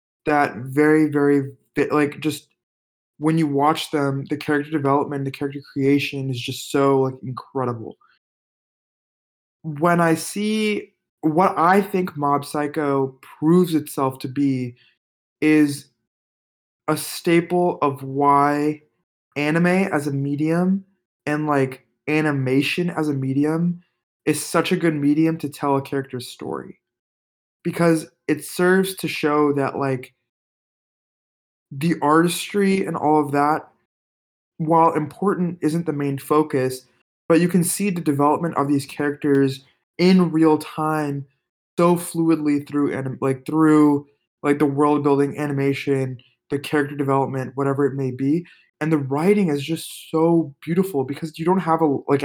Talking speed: 140 wpm